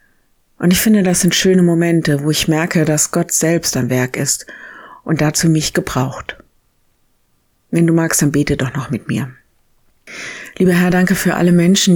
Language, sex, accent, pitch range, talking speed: German, female, German, 155-180 Hz, 175 wpm